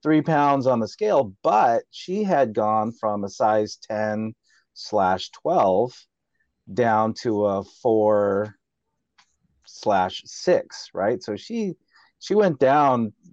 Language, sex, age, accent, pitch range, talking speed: English, male, 30-49, American, 95-115 Hz, 120 wpm